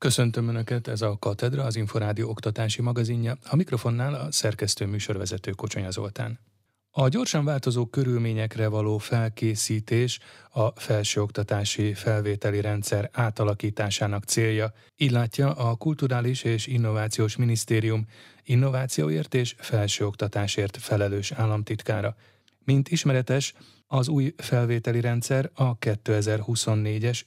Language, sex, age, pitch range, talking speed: Hungarian, male, 30-49, 105-125 Hz, 105 wpm